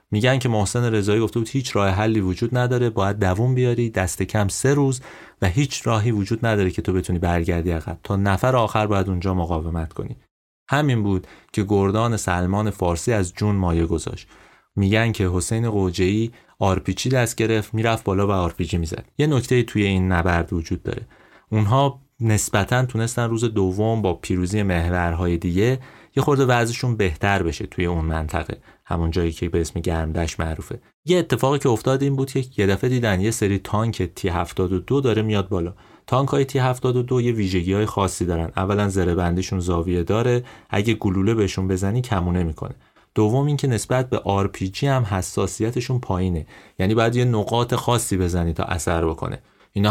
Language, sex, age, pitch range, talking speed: Persian, male, 30-49, 95-120 Hz, 165 wpm